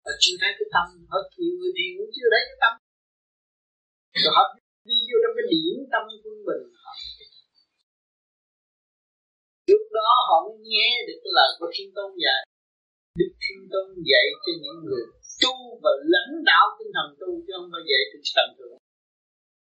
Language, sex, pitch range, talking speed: Vietnamese, male, 315-425 Hz, 165 wpm